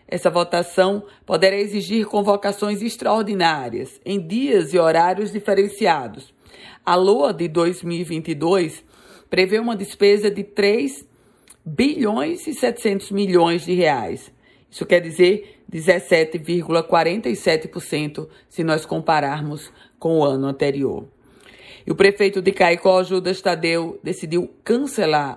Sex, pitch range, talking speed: female, 155-200 Hz, 110 wpm